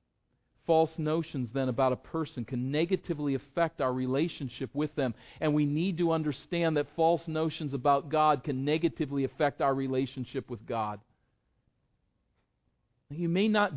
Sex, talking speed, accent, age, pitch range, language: male, 145 wpm, American, 40-59, 125-165 Hz, English